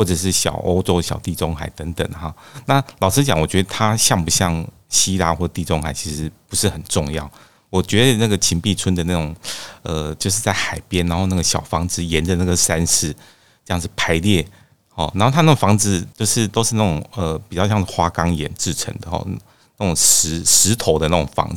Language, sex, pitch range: Chinese, male, 80-105 Hz